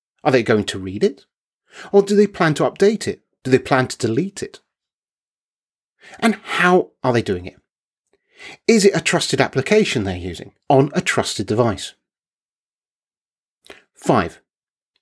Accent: British